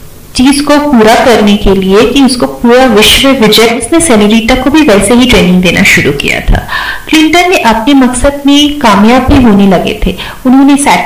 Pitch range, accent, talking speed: 195-275 Hz, native, 65 wpm